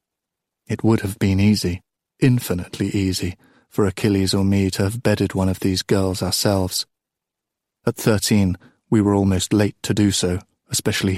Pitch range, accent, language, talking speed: 95-110 Hz, British, English, 155 wpm